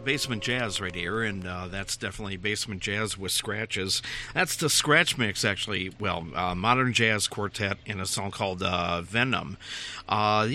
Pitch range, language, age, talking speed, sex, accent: 100-125 Hz, English, 50-69, 165 wpm, male, American